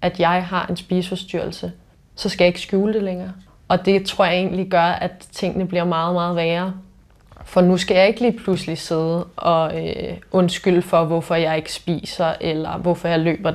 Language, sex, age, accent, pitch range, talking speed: Danish, female, 20-39, native, 170-190 Hz, 195 wpm